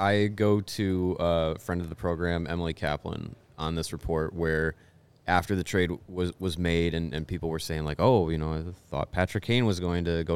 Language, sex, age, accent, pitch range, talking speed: English, male, 20-39, American, 80-100 Hz, 215 wpm